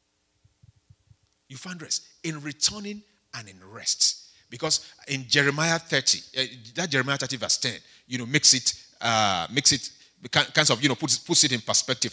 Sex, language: male, English